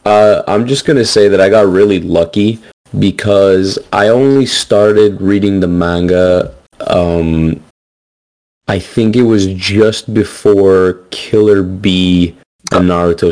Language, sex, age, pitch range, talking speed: English, male, 30-49, 90-110 Hz, 130 wpm